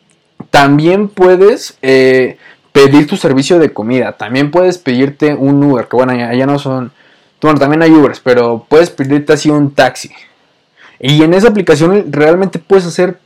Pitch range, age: 130-170 Hz, 20-39